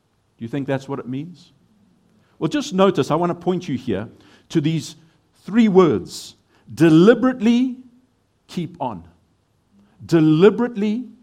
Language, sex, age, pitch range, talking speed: English, male, 50-69, 130-215 Hz, 130 wpm